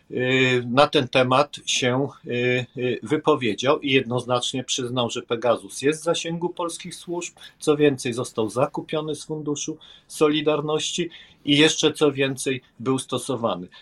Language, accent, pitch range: Polish, native, 115-155 Hz